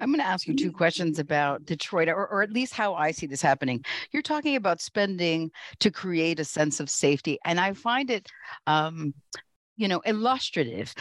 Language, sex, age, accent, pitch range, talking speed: English, female, 50-69, American, 150-205 Hz, 195 wpm